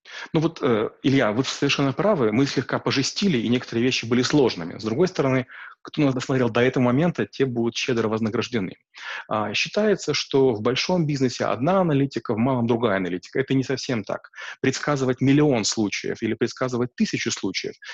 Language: Russian